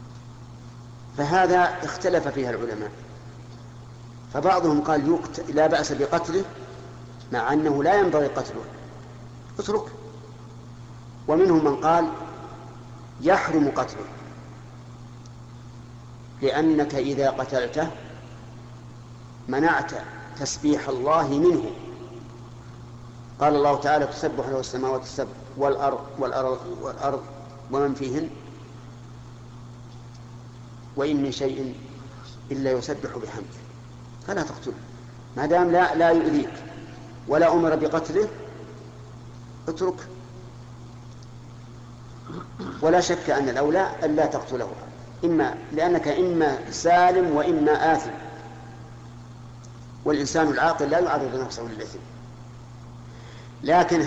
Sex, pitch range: male, 120-145 Hz